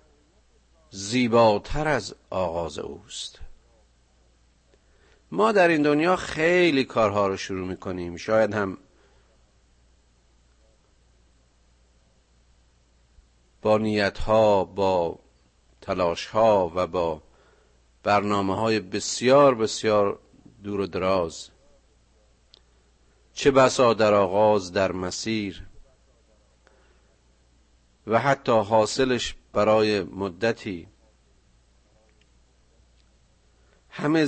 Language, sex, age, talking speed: Persian, male, 50-69, 70 wpm